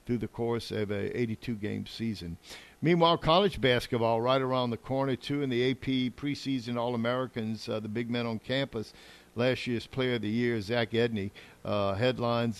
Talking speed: 180 wpm